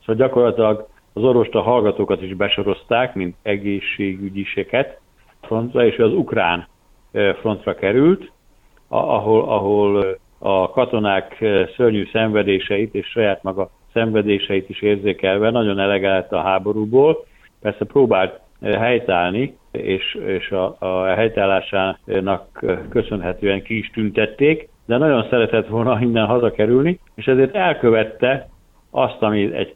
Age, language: 60-79, Hungarian